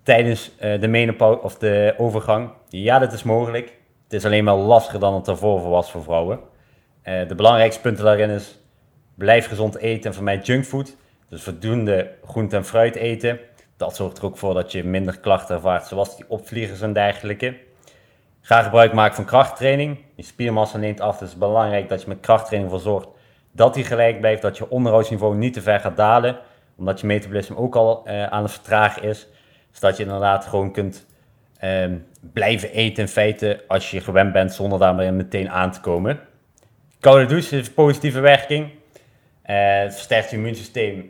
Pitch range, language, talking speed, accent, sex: 100-120 Hz, Dutch, 180 wpm, Dutch, male